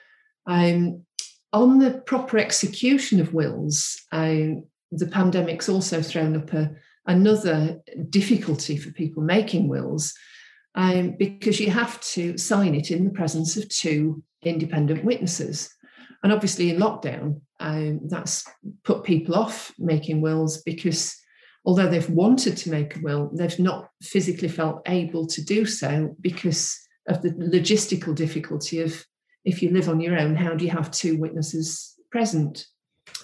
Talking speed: 145 wpm